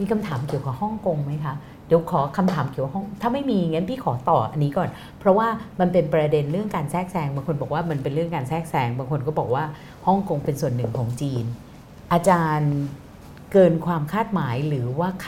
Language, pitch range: Thai, 145-185 Hz